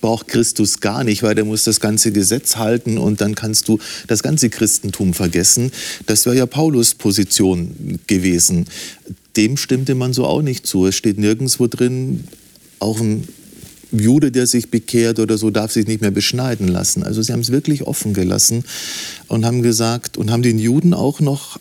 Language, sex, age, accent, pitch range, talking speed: German, male, 50-69, German, 100-115 Hz, 185 wpm